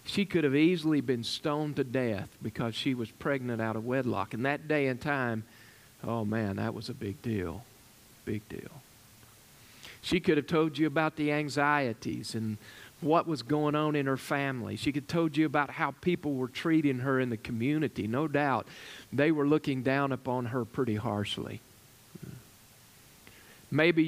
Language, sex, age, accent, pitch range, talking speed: English, male, 50-69, American, 115-150 Hz, 175 wpm